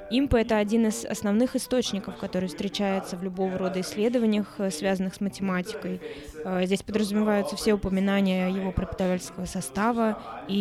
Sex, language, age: female, Russian, 20-39